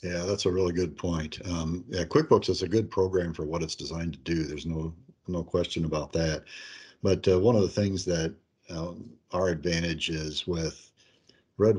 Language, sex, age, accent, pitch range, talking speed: English, male, 50-69, American, 80-95 Hz, 195 wpm